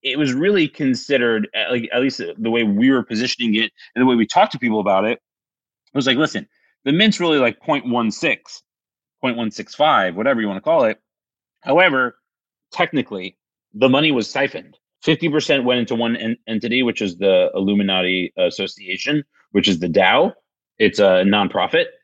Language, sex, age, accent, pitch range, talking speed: English, male, 30-49, American, 105-140 Hz, 170 wpm